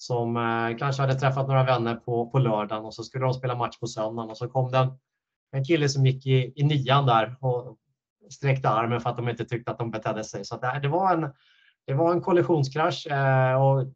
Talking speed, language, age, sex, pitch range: 220 wpm, Swedish, 30-49, male, 115-135 Hz